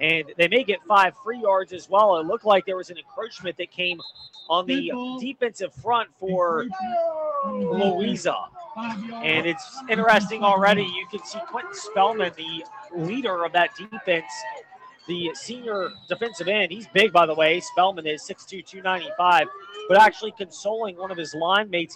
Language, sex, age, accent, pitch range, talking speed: English, male, 30-49, American, 180-235 Hz, 160 wpm